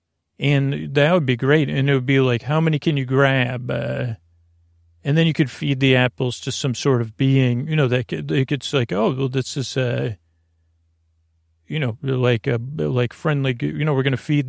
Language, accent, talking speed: English, American, 210 wpm